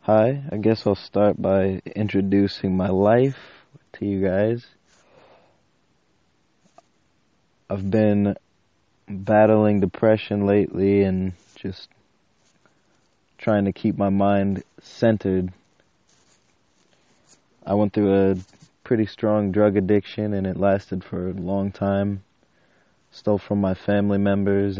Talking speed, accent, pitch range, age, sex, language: 110 wpm, American, 95-105 Hz, 20-39, male, English